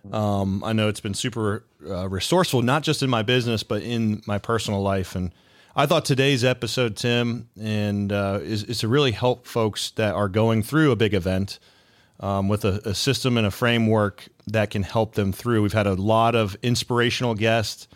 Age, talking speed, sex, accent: 30-49, 195 wpm, male, American